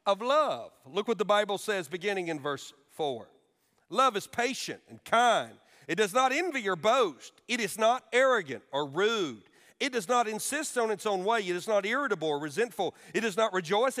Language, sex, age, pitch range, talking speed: English, male, 40-59, 190-240 Hz, 195 wpm